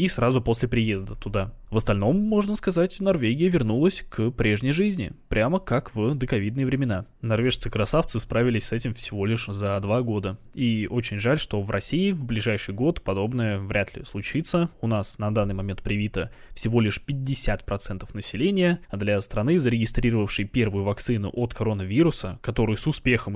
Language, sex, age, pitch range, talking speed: Russian, male, 20-39, 105-135 Hz, 160 wpm